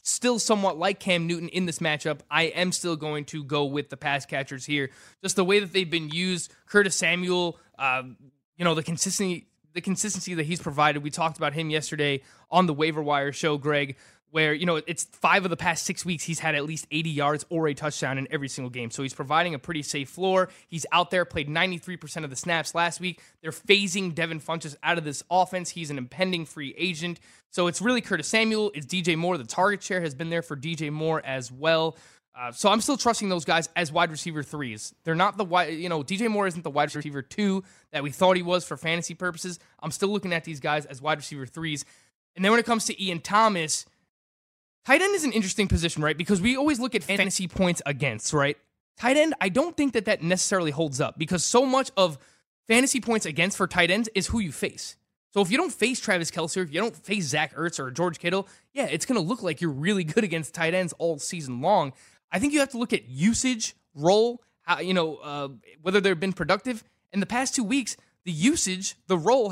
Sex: male